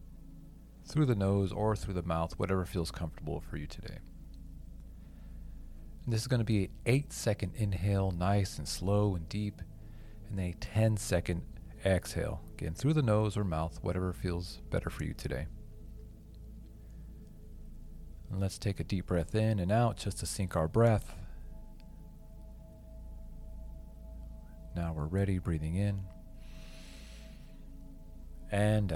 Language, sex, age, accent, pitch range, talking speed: English, male, 40-59, American, 80-95 Hz, 135 wpm